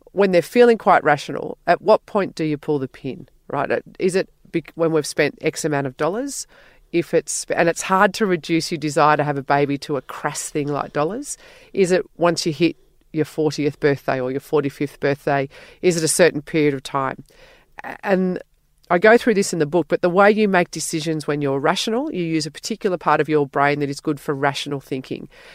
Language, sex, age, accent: English, female, 40-59, Australian